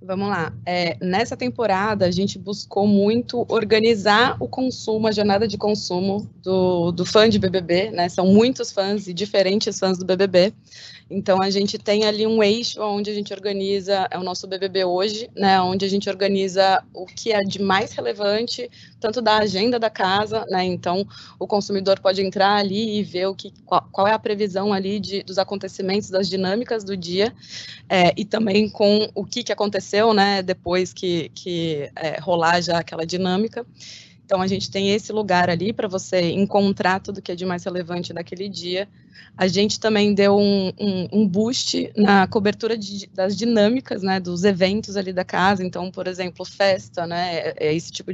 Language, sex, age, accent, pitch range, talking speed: Portuguese, female, 20-39, Brazilian, 185-210 Hz, 185 wpm